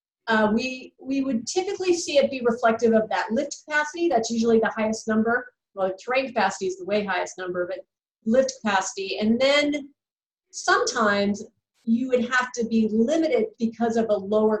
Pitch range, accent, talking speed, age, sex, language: 205-260 Hz, American, 175 wpm, 40-59, female, English